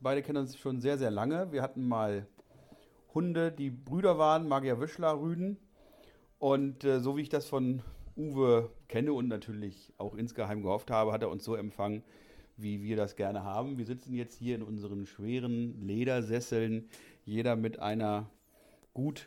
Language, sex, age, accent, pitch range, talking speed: German, male, 40-59, German, 105-130 Hz, 165 wpm